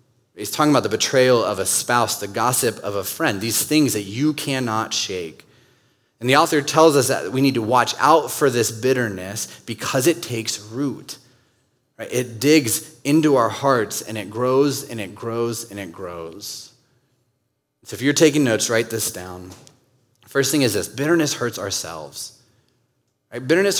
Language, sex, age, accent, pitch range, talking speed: English, male, 30-49, American, 115-140 Hz, 170 wpm